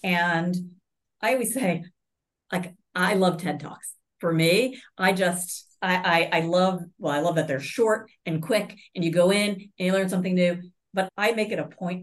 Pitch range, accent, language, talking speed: 155-190 Hz, American, English, 200 wpm